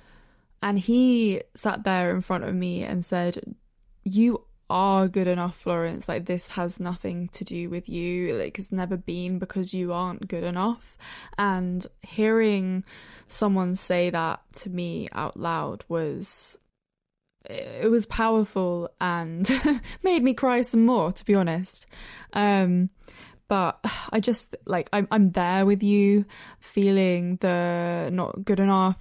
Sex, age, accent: female, 10-29, British